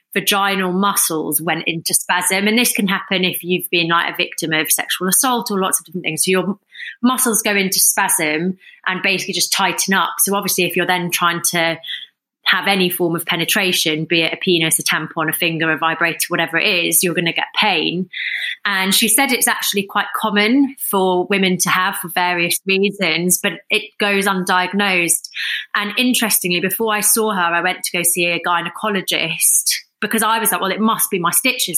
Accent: British